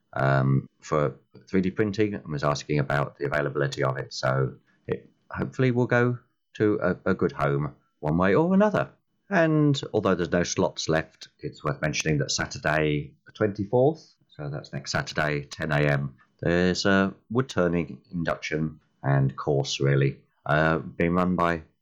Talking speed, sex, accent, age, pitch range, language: 155 wpm, male, British, 30-49, 70-95 Hz, English